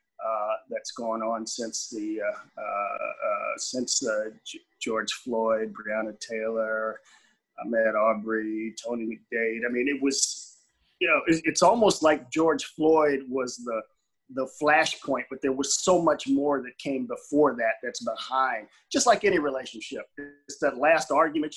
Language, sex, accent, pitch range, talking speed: English, male, American, 125-155 Hz, 155 wpm